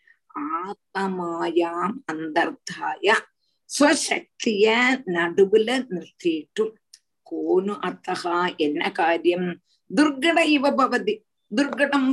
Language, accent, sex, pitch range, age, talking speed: Tamil, native, female, 185-285 Hz, 50-69, 55 wpm